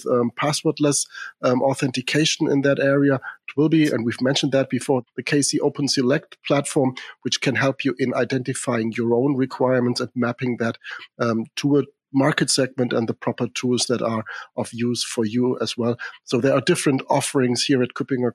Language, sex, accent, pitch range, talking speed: English, male, German, 125-155 Hz, 185 wpm